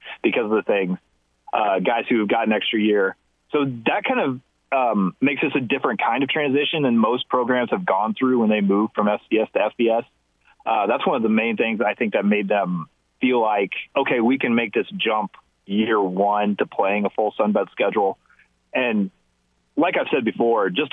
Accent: American